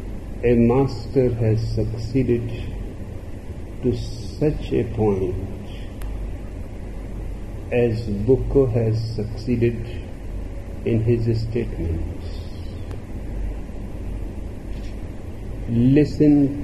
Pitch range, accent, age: 95-115 Hz, native, 50-69